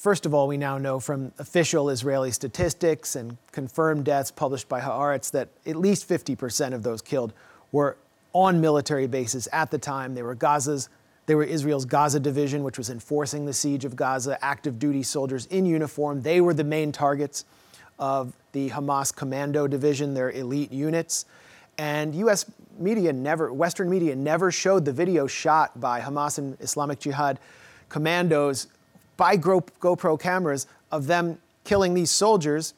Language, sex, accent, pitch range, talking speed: English, male, American, 135-160 Hz, 165 wpm